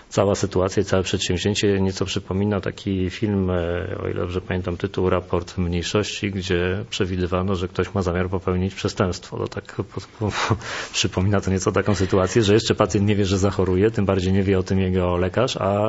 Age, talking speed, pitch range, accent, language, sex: 40-59, 170 wpm, 90-100 Hz, native, Polish, male